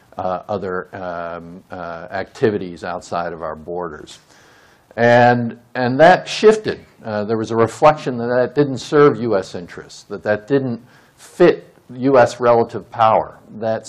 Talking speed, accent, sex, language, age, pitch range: 155 wpm, American, male, English, 50-69, 100-135 Hz